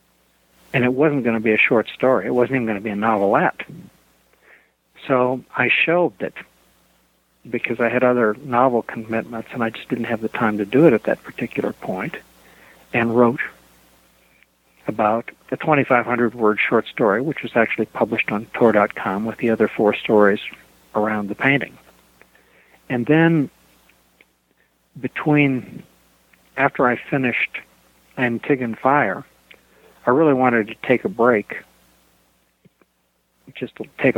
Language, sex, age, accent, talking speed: English, male, 60-79, American, 140 wpm